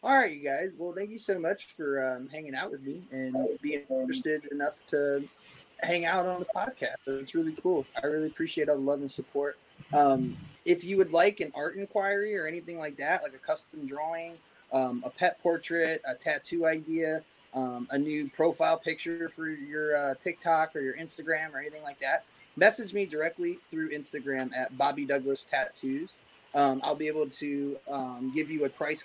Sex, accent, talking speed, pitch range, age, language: male, American, 195 wpm, 135-165 Hz, 20-39, English